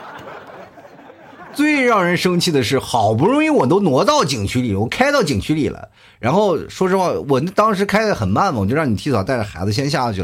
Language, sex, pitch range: Chinese, male, 100-145 Hz